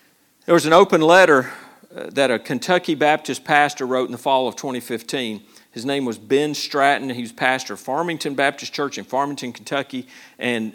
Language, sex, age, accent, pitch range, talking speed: English, male, 50-69, American, 135-180 Hz, 180 wpm